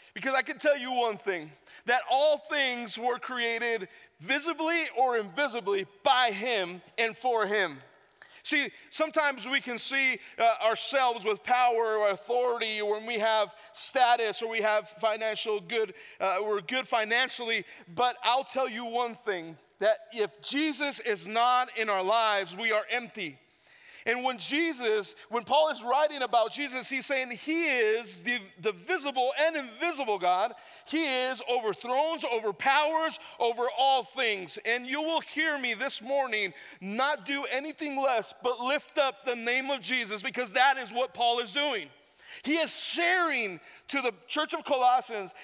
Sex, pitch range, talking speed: male, 220-285 Hz, 160 wpm